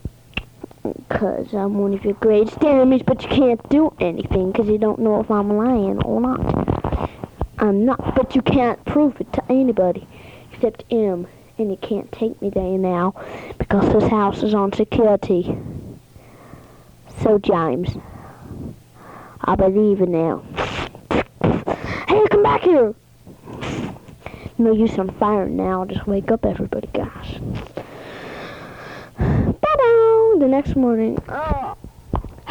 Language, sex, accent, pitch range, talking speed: English, female, American, 200-280 Hz, 125 wpm